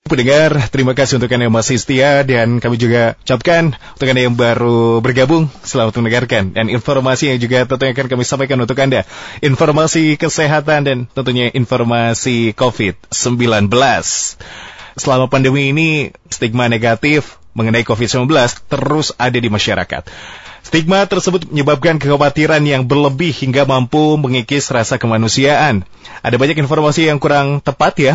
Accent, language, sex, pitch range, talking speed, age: native, Indonesian, male, 115-140 Hz, 135 wpm, 20-39